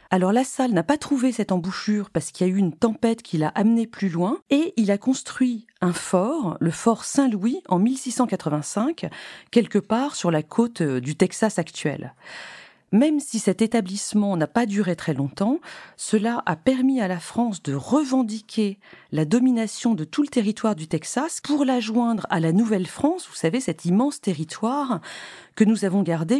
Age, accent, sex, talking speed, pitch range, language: 40-59, French, female, 180 wpm, 180-245 Hz, French